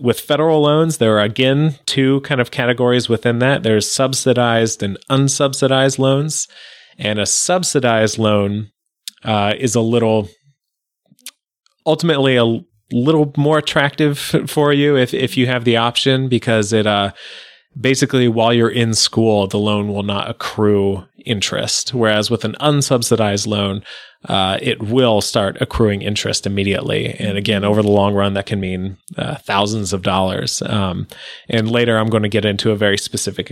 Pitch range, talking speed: 105-130 Hz, 160 wpm